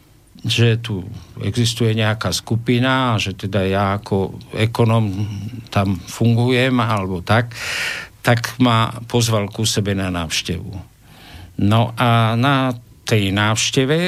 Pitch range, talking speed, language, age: 100-120 Hz, 110 wpm, Slovak, 50-69